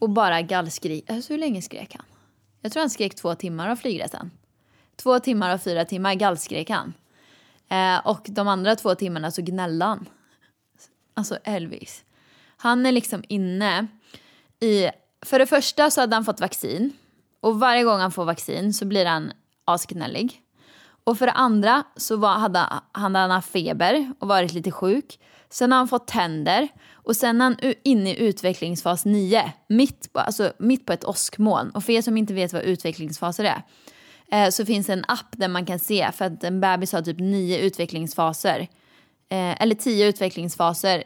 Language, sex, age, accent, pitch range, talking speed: Swedish, female, 20-39, native, 180-225 Hz, 175 wpm